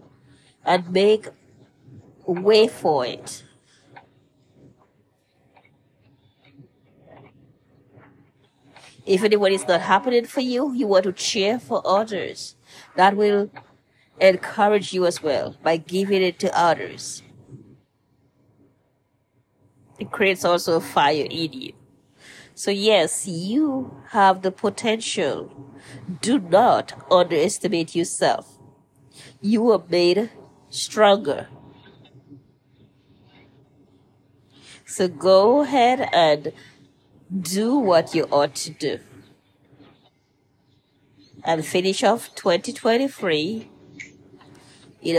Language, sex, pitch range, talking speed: English, female, 140-210 Hz, 85 wpm